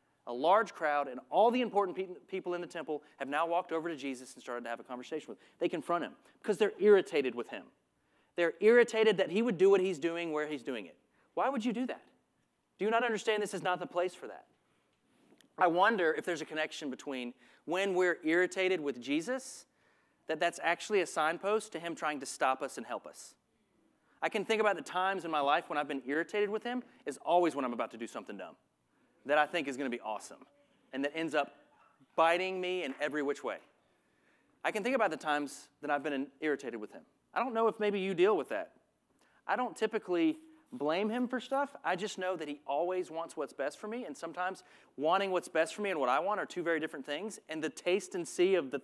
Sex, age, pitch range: male, 30-49, 150-215 Hz